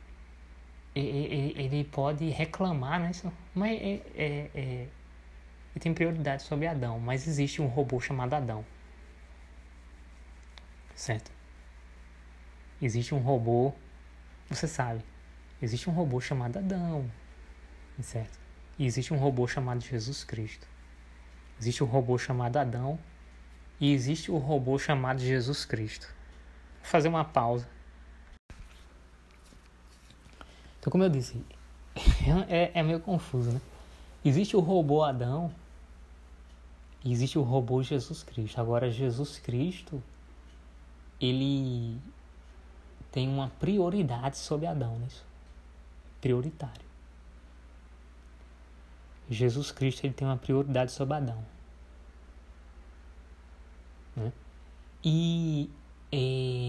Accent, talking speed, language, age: Brazilian, 95 wpm, Portuguese, 20-39